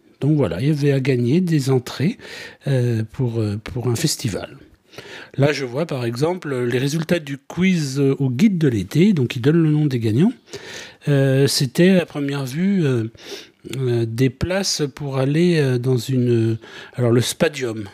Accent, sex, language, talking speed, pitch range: French, male, French, 175 wpm, 125-170 Hz